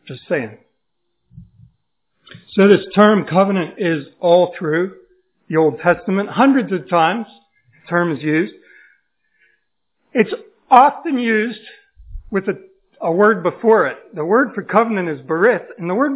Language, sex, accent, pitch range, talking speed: English, male, American, 170-230 Hz, 135 wpm